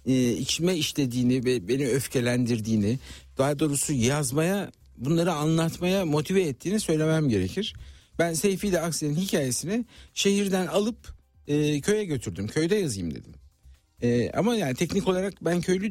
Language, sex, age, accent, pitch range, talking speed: Turkish, male, 60-79, native, 110-165 Hz, 130 wpm